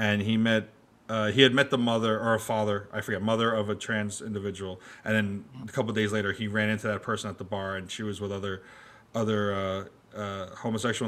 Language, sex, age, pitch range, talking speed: English, male, 30-49, 105-130 Hz, 235 wpm